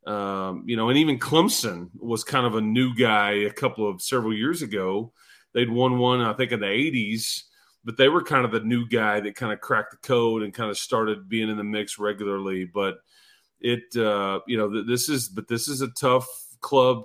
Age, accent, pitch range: 30-49, American, 105-130 Hz